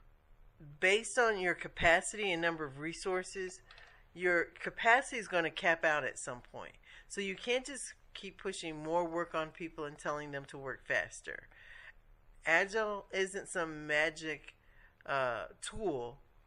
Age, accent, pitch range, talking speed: 50-69, American, 145-180 Hz, 145 wpm